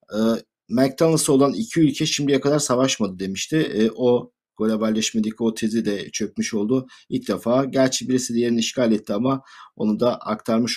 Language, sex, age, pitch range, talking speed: Turkish, male, 50-69, 110-140 Hz, 145 wpm